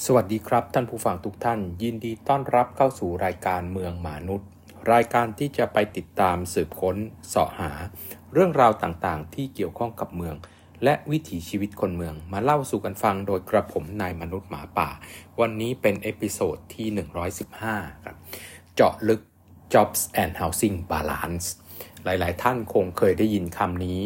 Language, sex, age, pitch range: Thai, male, 60-79, 85-110 Hz